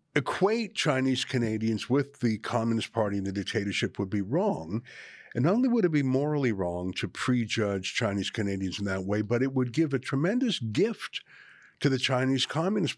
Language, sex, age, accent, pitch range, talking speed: English, male, 50-69, American, 110-160 Hz, 180 wpm